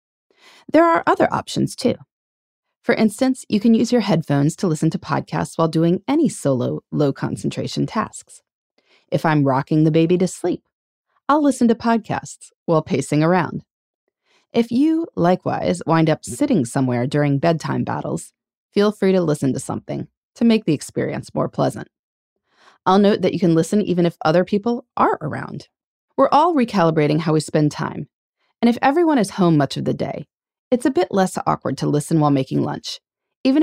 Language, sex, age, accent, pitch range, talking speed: English, female, 30-49, American, 155-260 Hz, 175 wpm